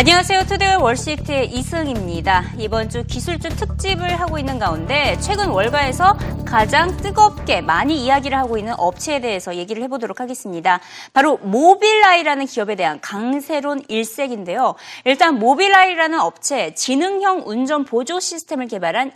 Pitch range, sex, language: 230-355 Hz, female, Korean